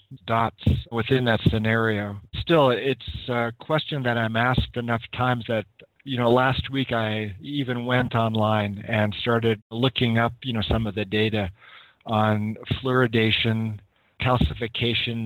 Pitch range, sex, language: 105-125 Hz, male, English